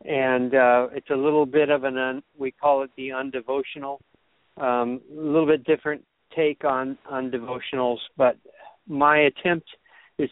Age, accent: 60-79, American